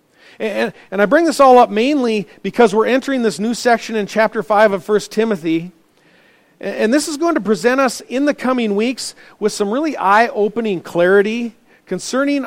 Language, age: English, 40-59